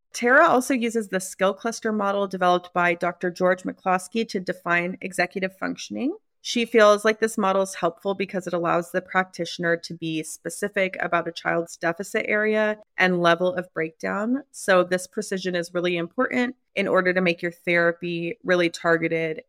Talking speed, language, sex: 165 wpm, English, female